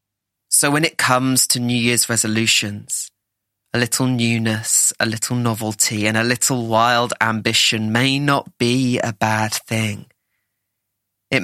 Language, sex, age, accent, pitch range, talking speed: English, male, 20-39, British, 105-120 Hz, 135 wpm